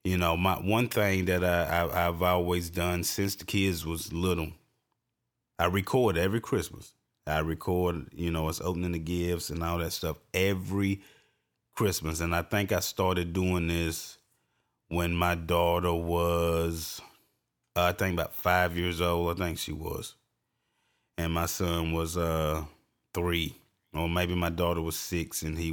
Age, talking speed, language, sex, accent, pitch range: 30-49, 160 wpm, English, male, American, 85-95 Hz